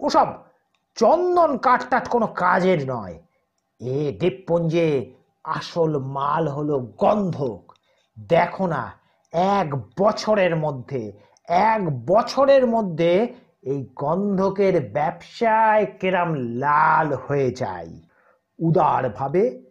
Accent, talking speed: native, 70 wpm